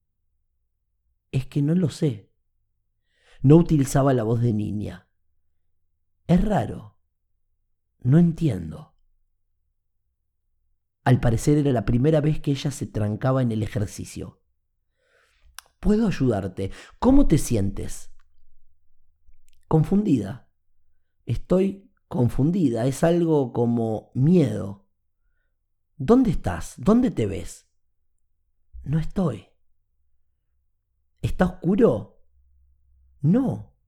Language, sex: Spanish, male